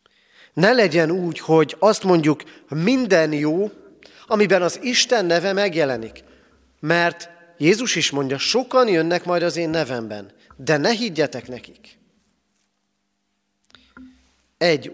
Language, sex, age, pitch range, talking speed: Hungarian, male, 40-59, 110-170 Hz, 115 wpm